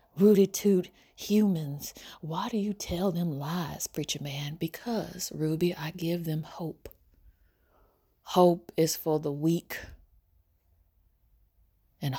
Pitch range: 95-155 Hz